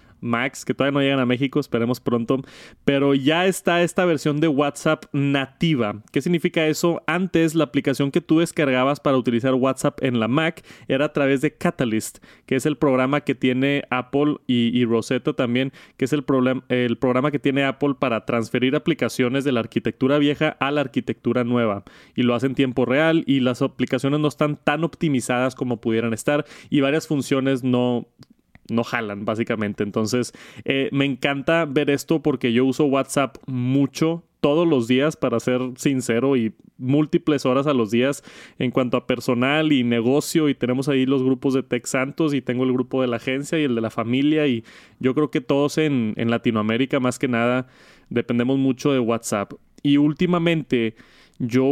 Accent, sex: Mexican, male